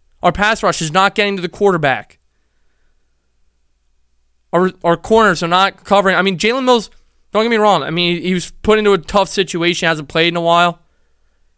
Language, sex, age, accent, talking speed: English, male, 20-39, American, 190 wpm